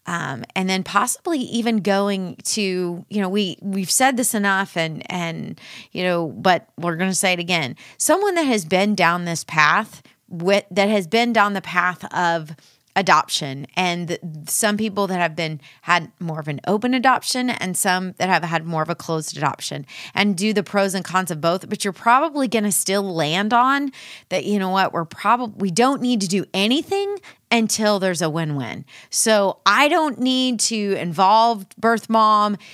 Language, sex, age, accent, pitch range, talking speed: English, female, 30-49, American, 170-220 Hz, 185 wpm